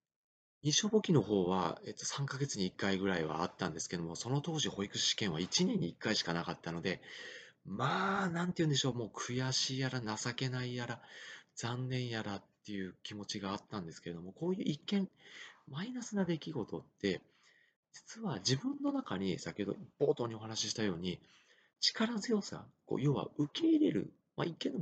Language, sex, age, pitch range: Japanese, male, 40-59, 100-165 Hz